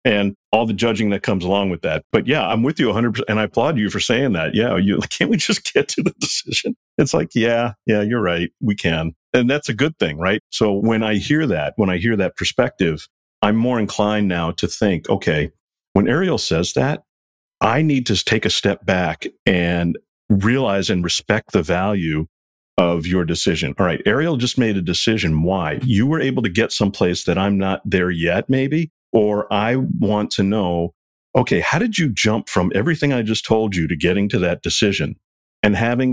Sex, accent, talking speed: male, American, 205 wpm